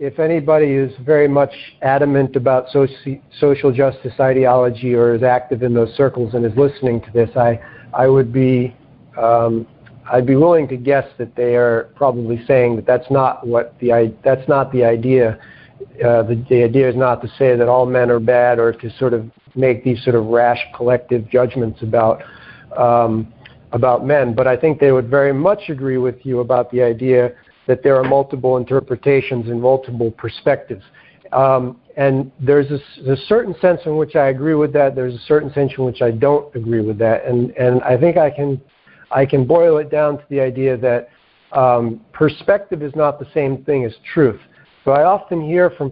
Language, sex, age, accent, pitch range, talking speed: English, male, 50-69, American, 120-140 Hz, 195 wpm